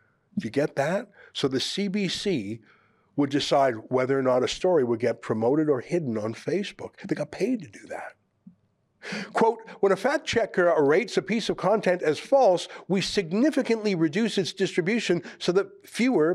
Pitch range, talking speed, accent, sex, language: 140-200 Hz, 175 wpm, American, male, English